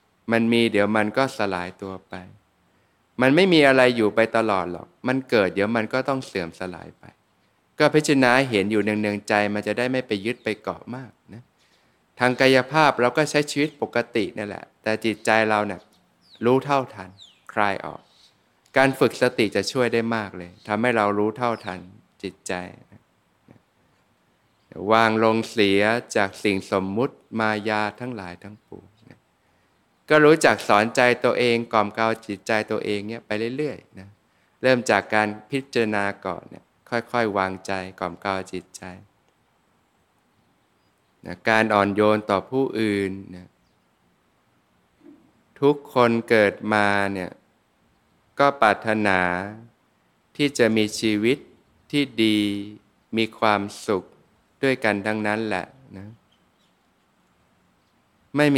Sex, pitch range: male, 100-120 Hz